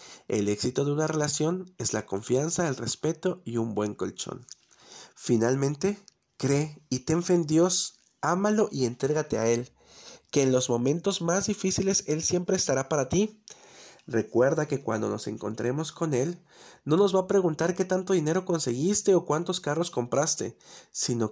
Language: Spanish